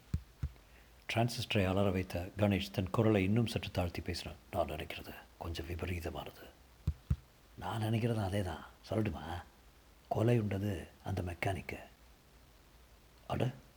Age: 50-69